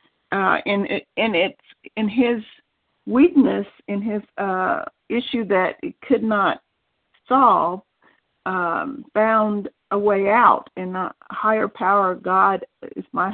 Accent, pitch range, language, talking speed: American, 185-215 Hz, English, 130 wpm